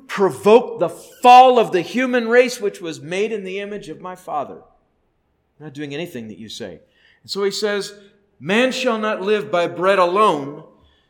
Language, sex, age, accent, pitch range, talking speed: English, male, 40-59, American, 180-240 Hz, 185 wpm